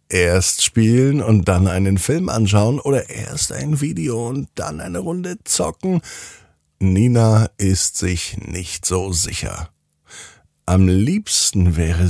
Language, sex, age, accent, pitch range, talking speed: German, male, 50-69, German, 85-115 Hz, 125 wpm